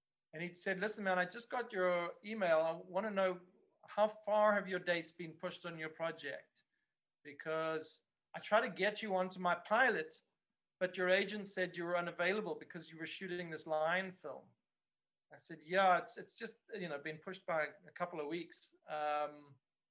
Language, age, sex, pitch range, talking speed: English, 40-59, male, 160-185 Hz, 190 wpm